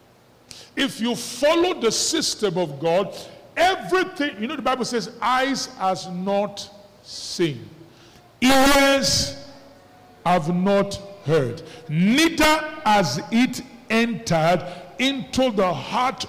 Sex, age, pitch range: male, 50-69, 145-215 Hz